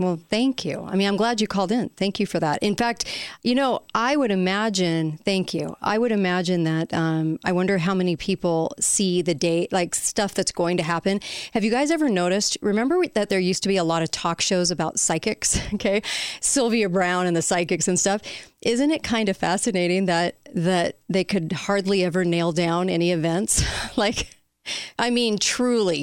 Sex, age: female, 30-49